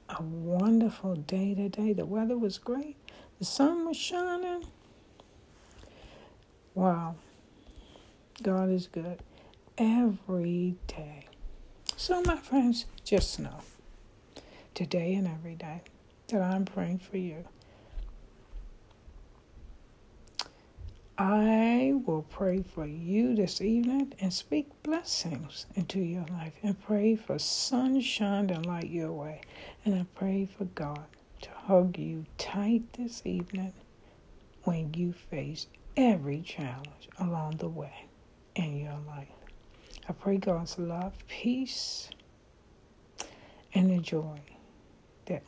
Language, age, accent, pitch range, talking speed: English, 60-79, American, 165-225 Hz, 110 wpm